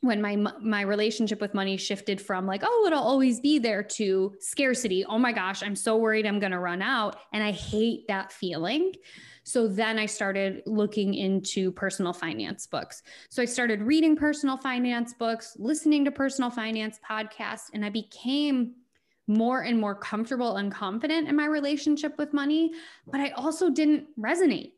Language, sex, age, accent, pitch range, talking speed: English, female, 20-39, American, 200-260 Hz, 175 wpm